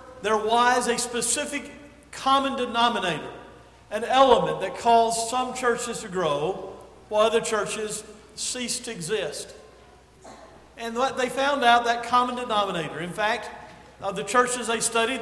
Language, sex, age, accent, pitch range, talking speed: English, male, 50-69, American, 200-240 Hz, 135 wpm